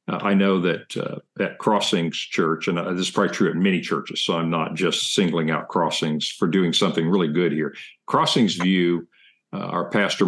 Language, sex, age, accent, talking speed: English, male, 50-69, American, 200 wpm